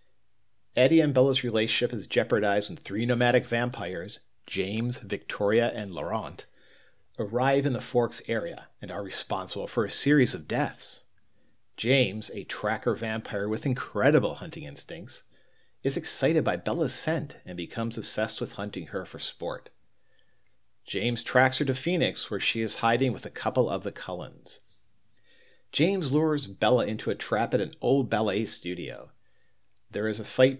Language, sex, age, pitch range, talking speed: English, male, 50-69, 110-135 Hz, 155 wpm